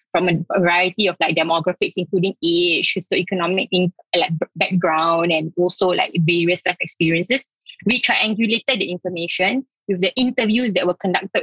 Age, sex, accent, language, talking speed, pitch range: 20-39, female, Malaysian, English, 145 wpm, 185-270 Hz